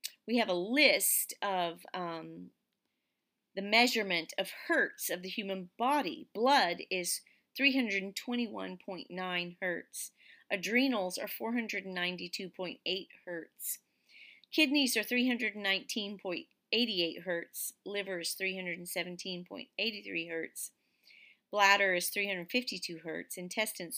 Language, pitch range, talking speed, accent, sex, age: English, 175-240 Hz, 90 wpm, American, female, 40-59